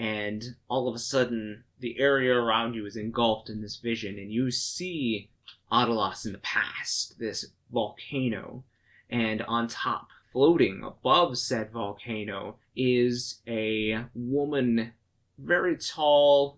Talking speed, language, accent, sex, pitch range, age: 125 wpm, English, American, male, 110-125 Hz, 20-39